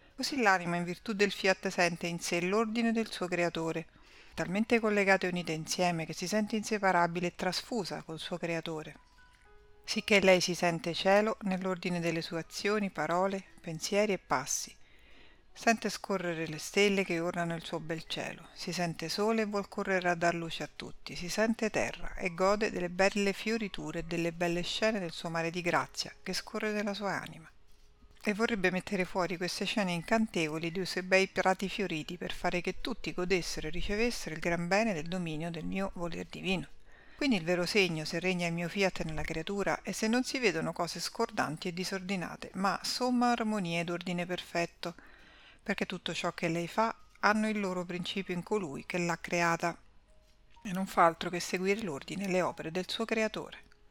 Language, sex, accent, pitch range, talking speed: Italian, female, native, 170-205 Hz, 185 wpm